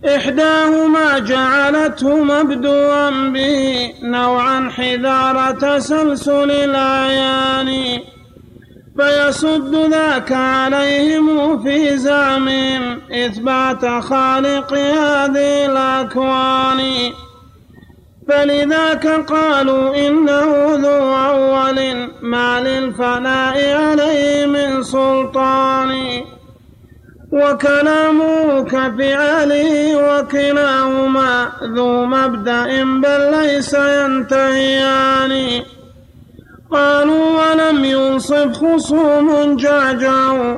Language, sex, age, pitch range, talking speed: Arabic, male, 30-49, 265-285 Hz, 60 wpm